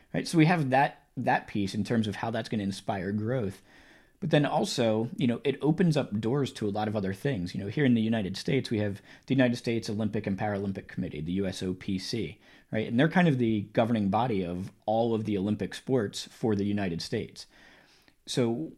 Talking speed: 215 wpm